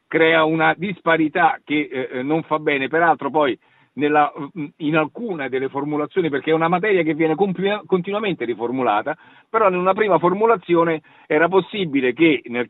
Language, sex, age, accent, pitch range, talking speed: Italian, male, 50-69, native, 135-170 Hz, 145 wpm